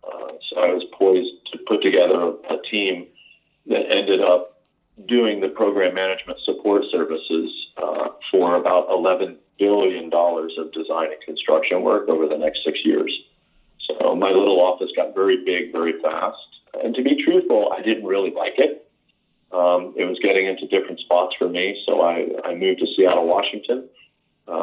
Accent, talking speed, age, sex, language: American, 170 wpm, 40-59, male, English